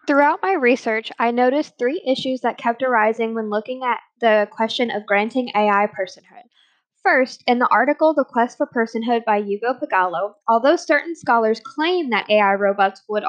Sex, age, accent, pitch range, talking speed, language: female, 10-29, American, 215-265 Hz, 170 wpm, English